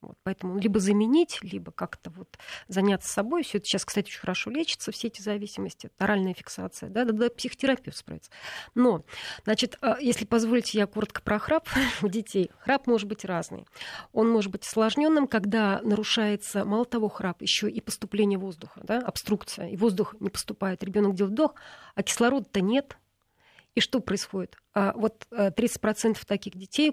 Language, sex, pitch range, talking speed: Russian, female, 195-240 Hz, 165 wpm